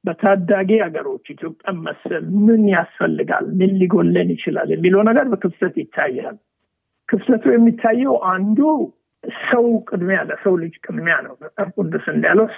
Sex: male